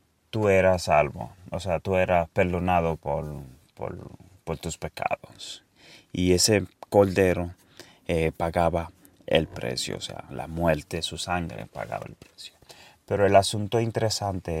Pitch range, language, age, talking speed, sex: 85-105 Hz, Swedish, 30-49, 130 wpm, male